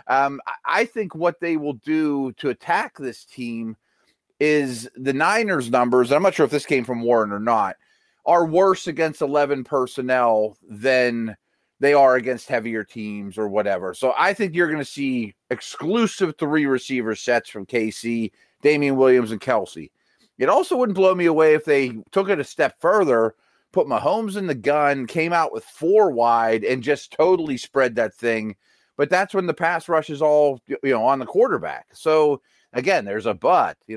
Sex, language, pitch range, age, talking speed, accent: male, English, 120-155 Hz, 30-49, 185 wpm, American